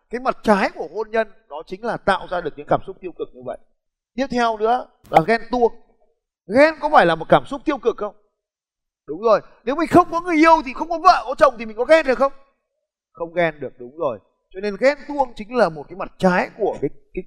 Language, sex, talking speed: Vietnamese, male, 255 wpm